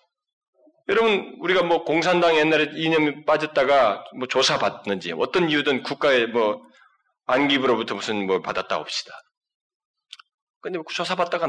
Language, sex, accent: Korean, male, native